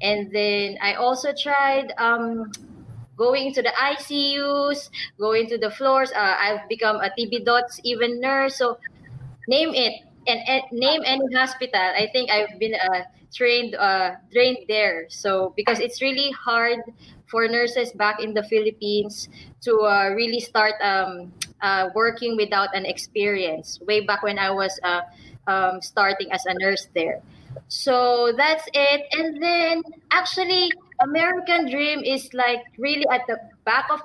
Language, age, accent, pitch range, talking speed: English, 20-39, Filipino, 210-270 Hz, 150 wpm